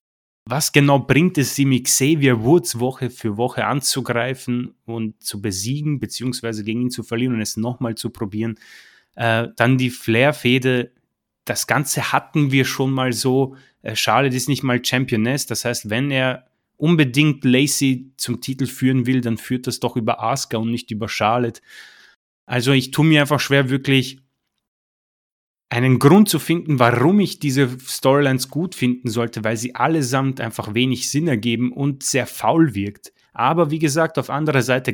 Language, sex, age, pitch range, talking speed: German, male, 30-49, 115-135 Hz, 165 wpm